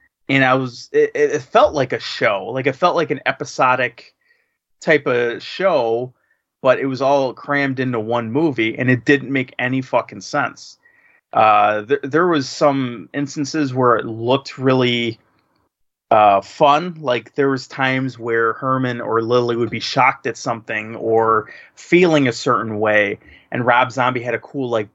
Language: English